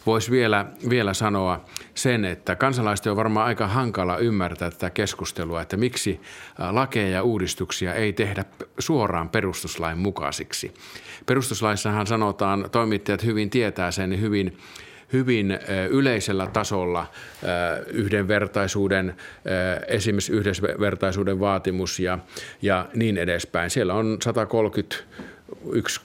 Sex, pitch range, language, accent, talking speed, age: male, 95-115 Hz, Finnish, native, 105 wpm, 50-69